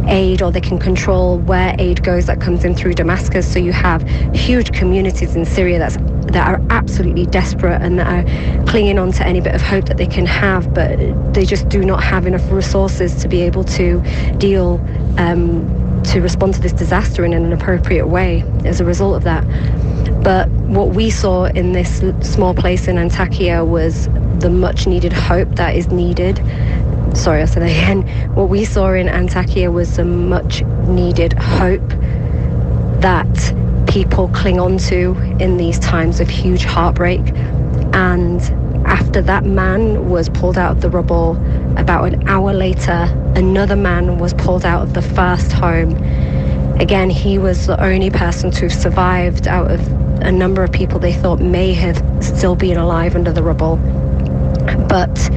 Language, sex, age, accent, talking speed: English, female, 30-49, British, 170 wpm